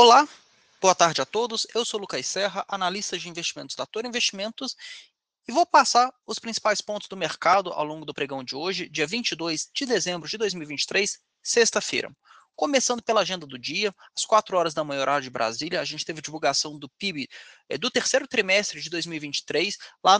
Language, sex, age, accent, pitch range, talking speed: Portuguese, male, 20-39, Brazilian, 160-215 Hz, 185 wpm